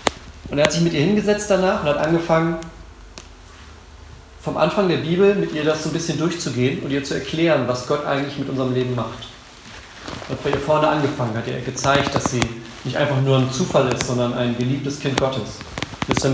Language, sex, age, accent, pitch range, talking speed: German, male, 40-59, German, 120-145 Hz, 210 wpm